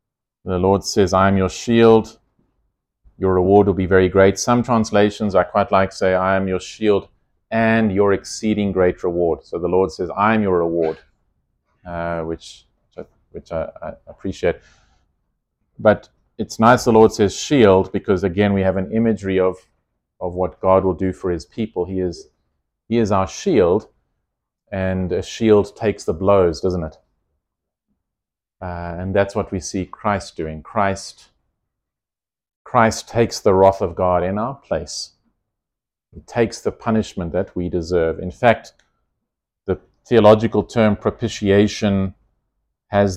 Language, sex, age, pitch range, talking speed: English, male, 30-49, 90-105 Hz, 155 wpm